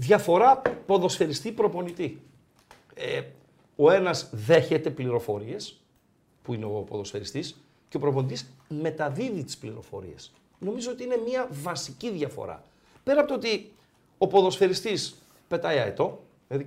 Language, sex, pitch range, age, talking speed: Greek, male, 145-230 Hz, 50-69, 115 wpm